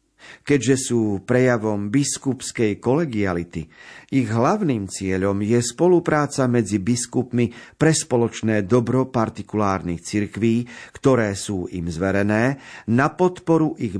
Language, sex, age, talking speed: Slovak, male, 50-69, 105 wpm